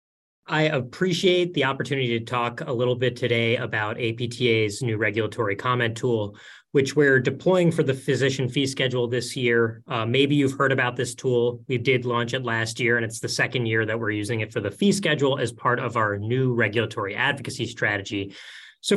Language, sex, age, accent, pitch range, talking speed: English, male, 30-49, American, 120-150 Hz, 195 wpm